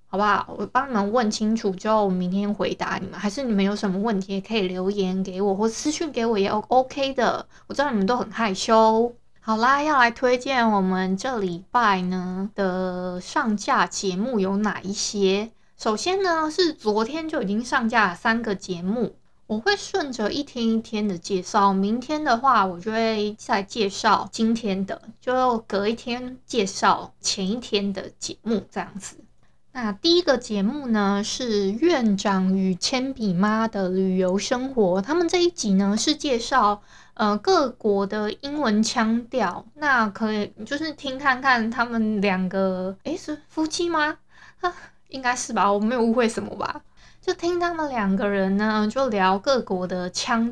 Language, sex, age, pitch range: Chinese, female, 20-39, 200-255 Hz